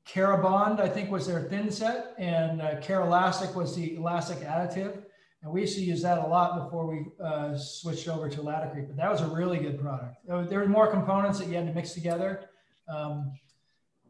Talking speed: 210 wpm